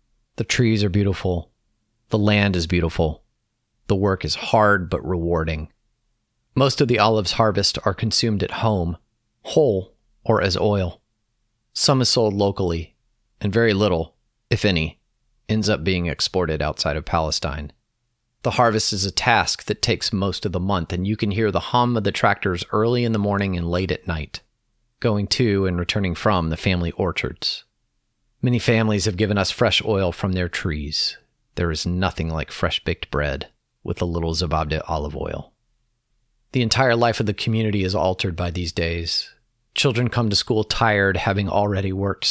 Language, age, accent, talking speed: English, 30-49, American, 170 wpm